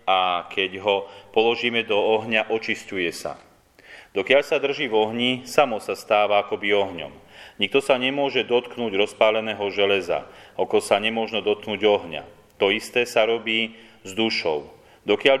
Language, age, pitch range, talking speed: Slovak, 30-49, 100-120 Hz, 140 wpm